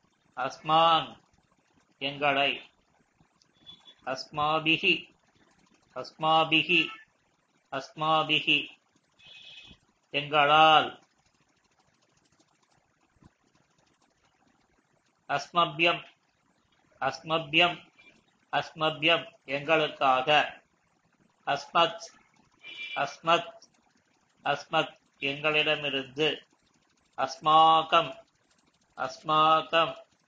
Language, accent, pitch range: Tamil, native, 150-170 Hz